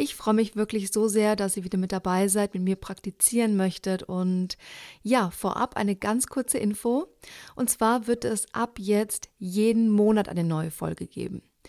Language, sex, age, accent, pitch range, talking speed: German, female, 40-59, German, 195-235 Hz, 180 wpm